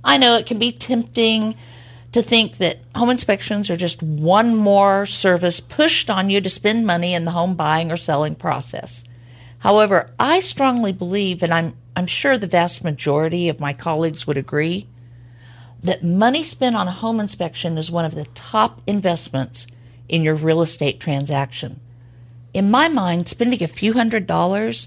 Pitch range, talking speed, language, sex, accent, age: 135-205 Hz, 170 wpm, English, female, American, 50-69